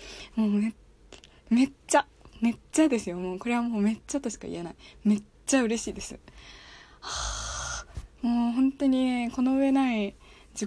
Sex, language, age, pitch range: female, Japanese, 20-39, 190-260 Hz